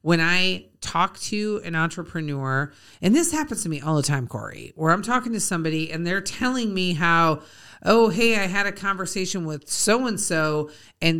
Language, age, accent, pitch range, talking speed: English, 40-59, American, 155-200 Hz, 180 wpm